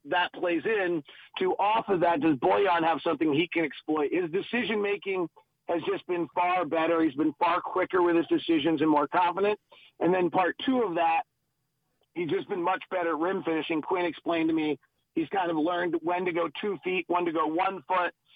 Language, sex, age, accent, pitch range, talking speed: English, male, 40-59, American, 160-185 Hz, 205 wpm